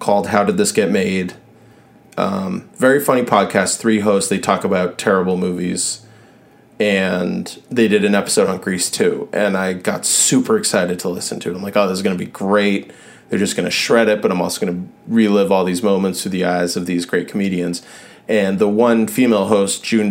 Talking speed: 210 wpm